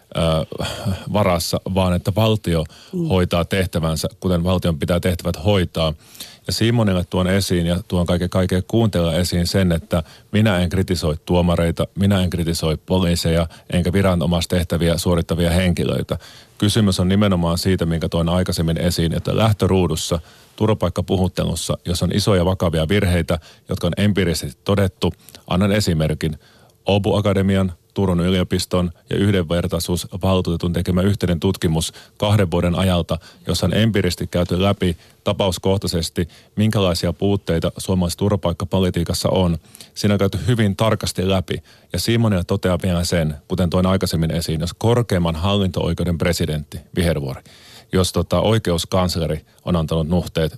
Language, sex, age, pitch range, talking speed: Finnish, male, 30-49, 85-100 Hz, 125 wpm